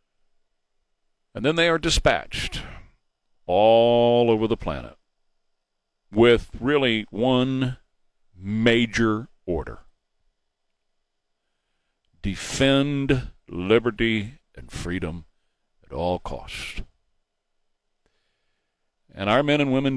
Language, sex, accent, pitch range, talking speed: English, male, American, 100-125 Hz, 80 wpm